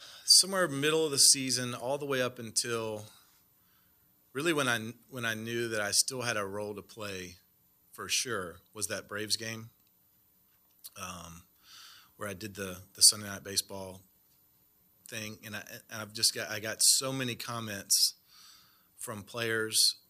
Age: 40-59